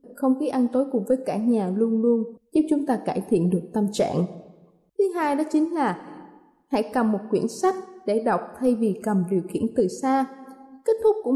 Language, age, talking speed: Vietnamese, 20-39, 210 wpm